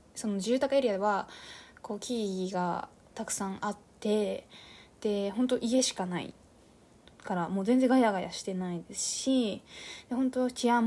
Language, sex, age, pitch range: Japanese, female, 20-39, 200-260 Hz